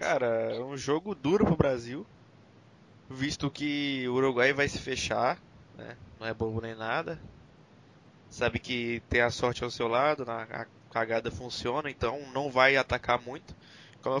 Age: 20-39